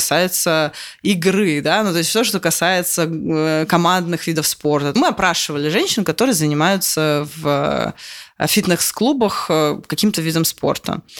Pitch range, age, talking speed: 155-190 Hz, 20-39, 120 wpm